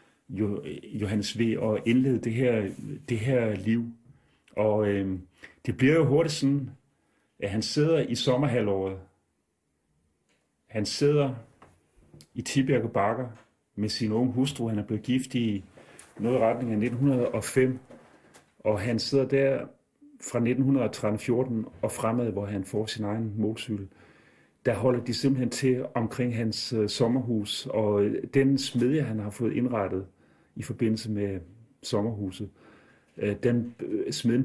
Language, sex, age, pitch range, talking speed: Danish, male, 40-59, 105-130 Hz, 130 wpm